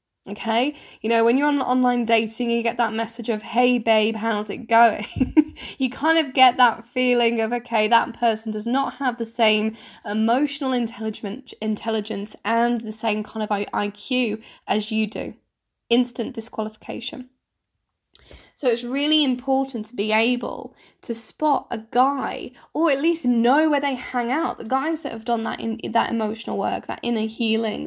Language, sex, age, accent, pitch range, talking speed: English, female, 10-29, British, 225-260 Hz, 170 wpm